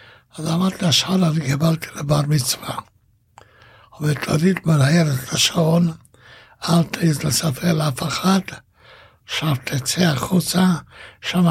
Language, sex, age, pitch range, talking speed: Hebrew, male, 60-79, 145-170 Hz, 100 wpm